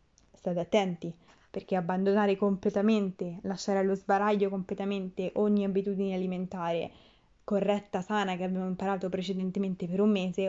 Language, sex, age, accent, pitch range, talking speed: Italian, female, 20-39, native, 185-215 Hz, 120 wpm